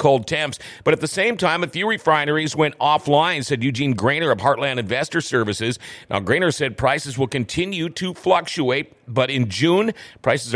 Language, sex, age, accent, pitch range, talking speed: English, male, 40-59, American, 125-165 Hz, 175 wpm